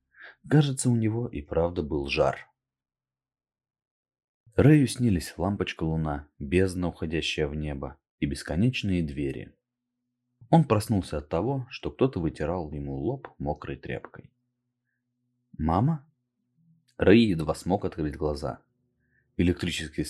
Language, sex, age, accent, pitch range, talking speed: Russian, male, 30-49, native, 75-120 Hz, 105 wpm